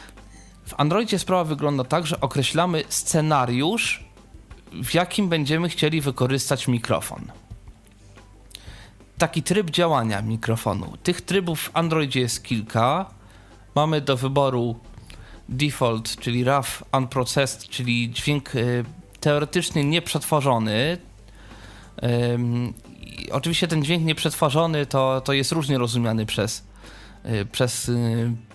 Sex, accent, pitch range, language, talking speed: male, native, 115-150 Hz, Polish, 100 wpm